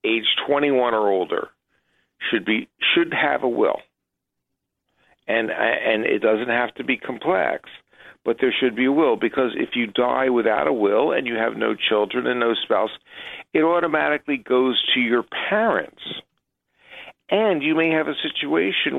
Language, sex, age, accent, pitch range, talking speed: English, male, 50-69, American, 120-155 Hz, 160 wpm